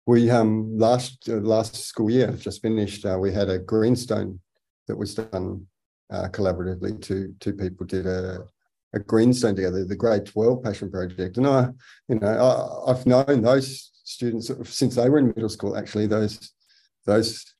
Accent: Australian